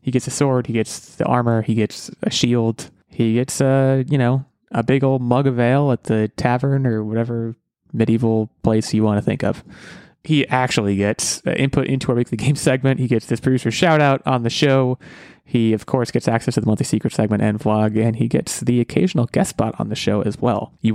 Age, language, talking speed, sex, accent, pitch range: 20-39, English, 220 wpm, male, American, 110-135 Hz